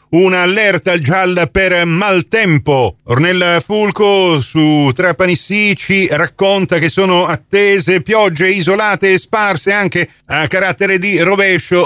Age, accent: 40-59, native